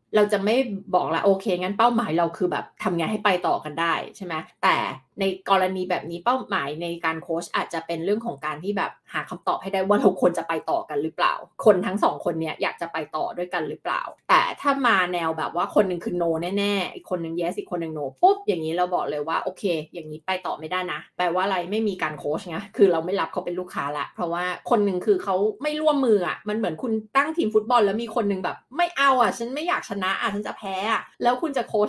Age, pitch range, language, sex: 20-39, 175-235 Hz, Thai, female